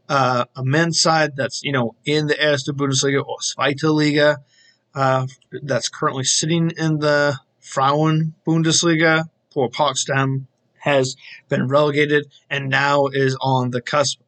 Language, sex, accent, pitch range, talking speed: English, male, American, 135-160 Hz, 140 wpm